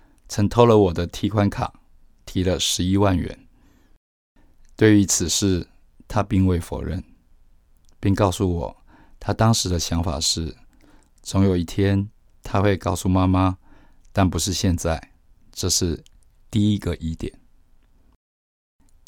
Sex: male